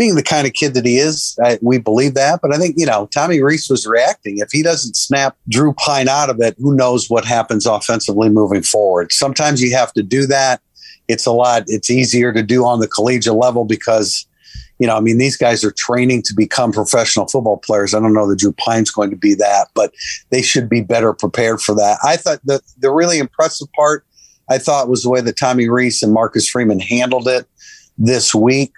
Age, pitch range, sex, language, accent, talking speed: 50-69, 110-135 Hz, male, English, American, 225 wpm